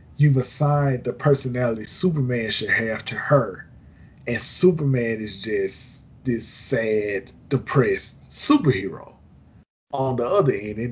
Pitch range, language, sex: 110-140 Hz, English, male